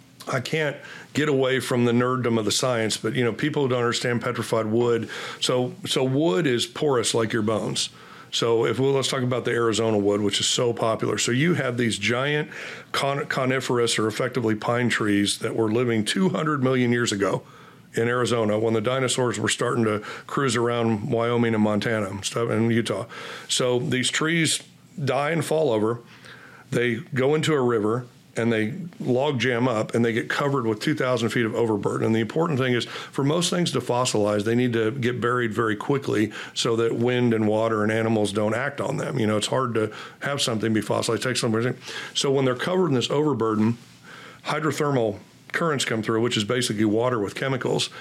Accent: American